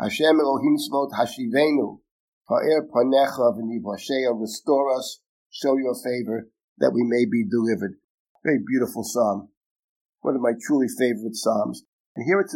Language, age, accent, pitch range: English, 50-69, American, 130-195 Hz